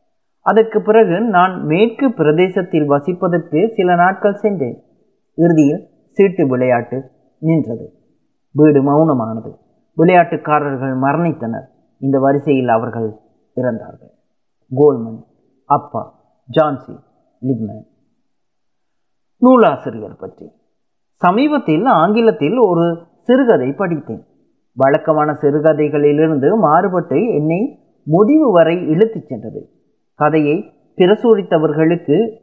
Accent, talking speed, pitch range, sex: native, 80 wpm, 140-195 Hz, male